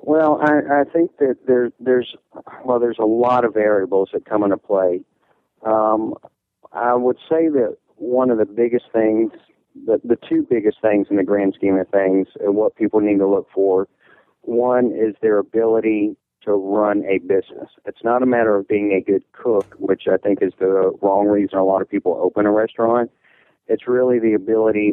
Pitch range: 95-115 Hz